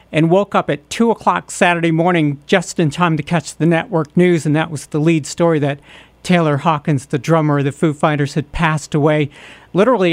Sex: male